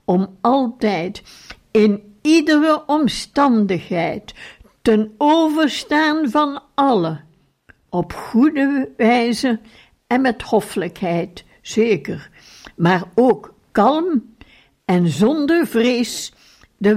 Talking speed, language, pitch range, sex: 80 wpm, Dutch, 185-245 Hz, female